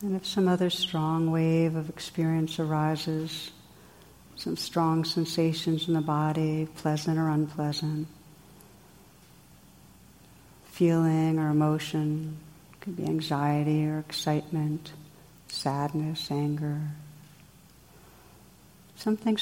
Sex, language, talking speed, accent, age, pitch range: female, English, 95 wpm, American, 60-79, 155-180 Hz